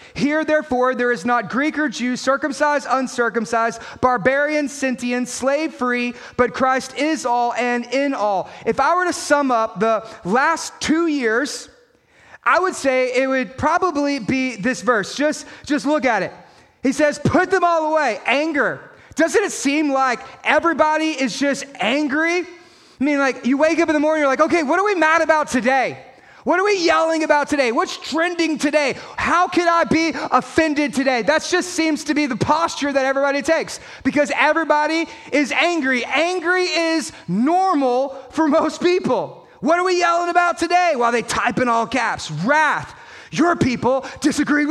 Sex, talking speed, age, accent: male, 175 wpm, 30-49, American